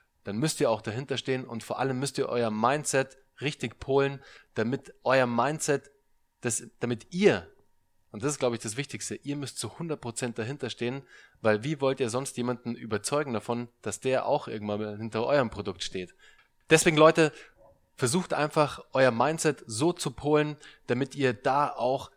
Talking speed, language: 170 wpm, German